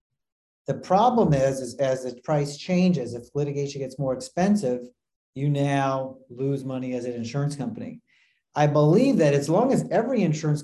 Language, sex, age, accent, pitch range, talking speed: English, male, 40-59, American, 125-150 Hz, 165 wpm